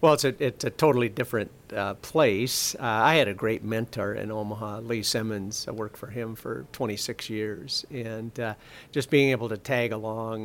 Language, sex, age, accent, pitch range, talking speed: English, male, 50-69, American, 115-145 Hz, 195 wpm